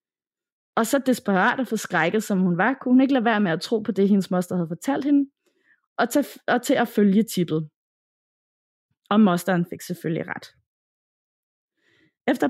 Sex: female